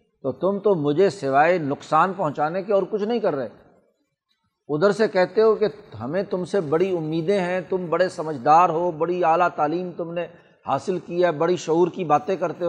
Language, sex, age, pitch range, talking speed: Urdu, male, 60-79, 150-195 Hz, 195 wpm